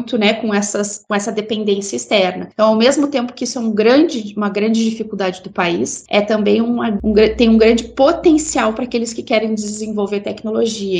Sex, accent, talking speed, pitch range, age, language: female, Brazilian, 195 wpm, 200-225 Hz, 20-39, Portuguese